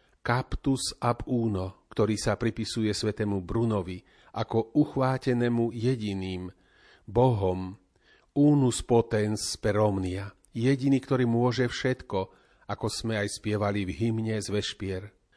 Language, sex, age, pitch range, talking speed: Slovak, male, 40-59, 105-125 Hz, 105 wpm